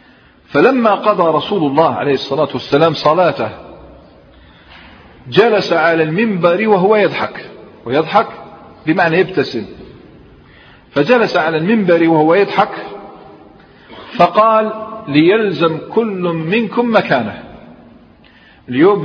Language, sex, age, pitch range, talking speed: Arabic, male, 50-69, 145-200 Hz, 85 wpm